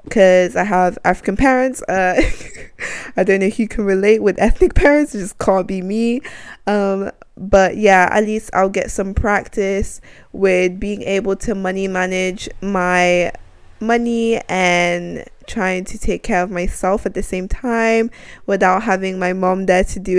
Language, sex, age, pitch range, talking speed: English, female, 10-29, 185-220 Hz, 165 wpm